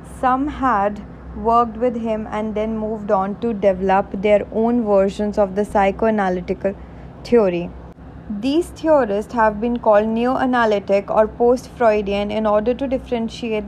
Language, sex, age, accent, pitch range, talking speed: English, female, 20-39, Indian, 205-240 Hz, 130 wpm